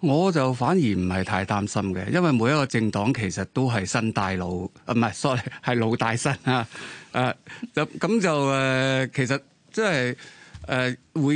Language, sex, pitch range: Chinese, male, 105-140 Hz